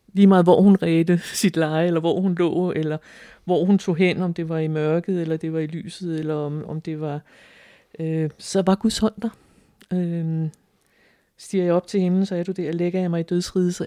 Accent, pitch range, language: native, 160-185 Hz, Danish